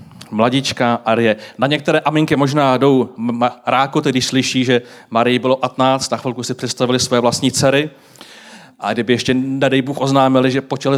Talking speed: 165 wpm